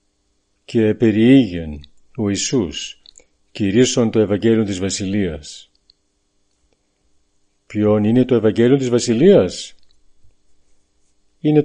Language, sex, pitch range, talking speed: Greek, male, 100-115 Hz, 80 wpm